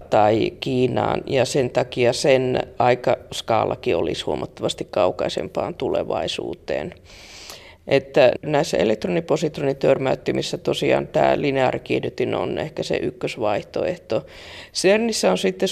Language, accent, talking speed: Finnish, native, 90 wpm